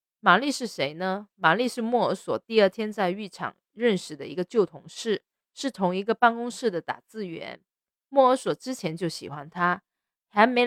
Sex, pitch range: female, 175-245 Hz